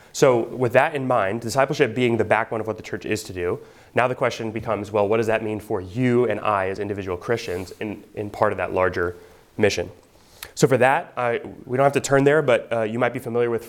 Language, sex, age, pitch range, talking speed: English, male, 30-49, 105-125 Hz, 245 wpm